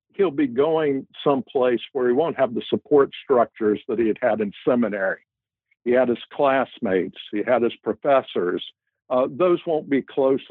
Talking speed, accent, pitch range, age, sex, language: 170 wpm, American, 120-150 Hz, 60-79, male, English